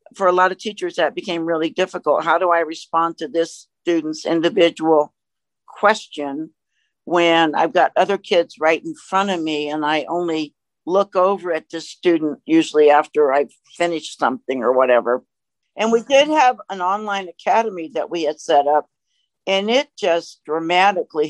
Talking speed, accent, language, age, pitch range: 165 wpm, American, English, 60-79, 160-210 Hz